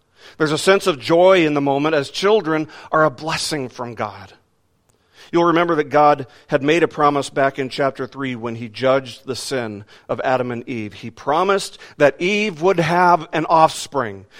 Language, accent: English, American